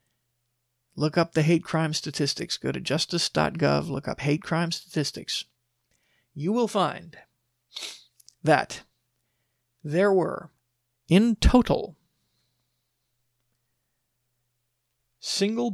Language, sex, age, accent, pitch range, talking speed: English, male, 40-59, American, 120-160 Hz, 90 wpm